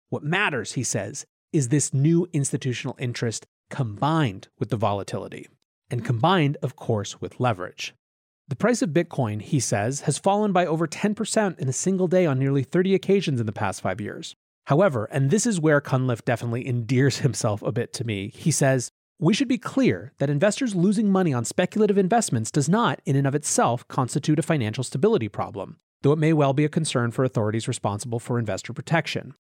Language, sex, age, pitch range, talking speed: English, male, 30-49, 120-165 Hz, 190 wpm